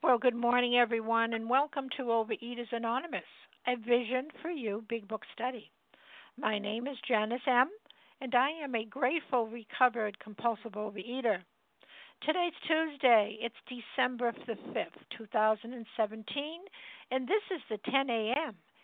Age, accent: 60-79, American